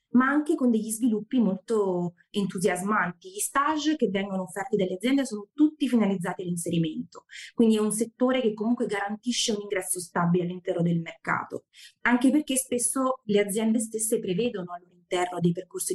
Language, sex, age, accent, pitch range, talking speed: Italian, female, 20-39, native, 185-235 Hz, 155 wpm